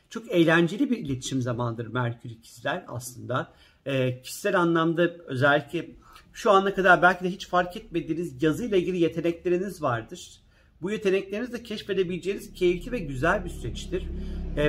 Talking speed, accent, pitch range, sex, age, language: 145 wpm, native, 135-180 Hz, male, 50-69, Turkish